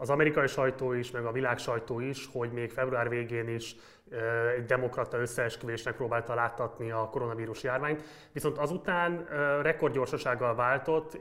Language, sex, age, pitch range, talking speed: Hungarian, male, 20-39, 120-140 Hz, 140 wpm